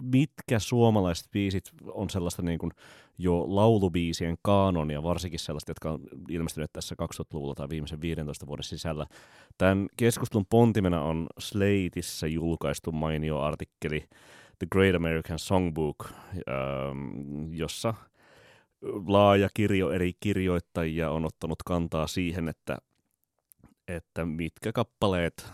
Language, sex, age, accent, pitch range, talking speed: Finnish, male, 30-49, native, 80-95 Hz, 110 wpm